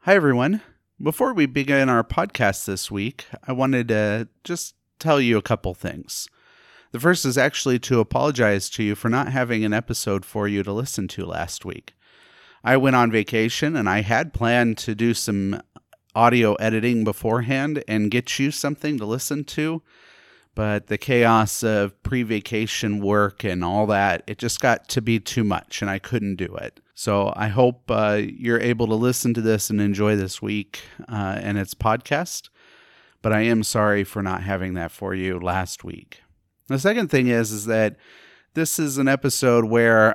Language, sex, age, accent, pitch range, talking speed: English, male, 30-49, American, 105-125 Hz, 180 wpm